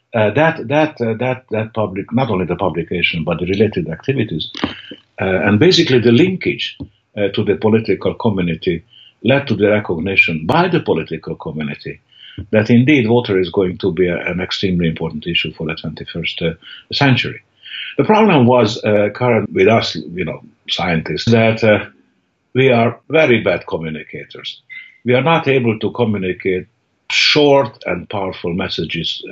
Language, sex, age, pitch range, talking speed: English, male, 60-79, 95-120 Hz, 160 wpm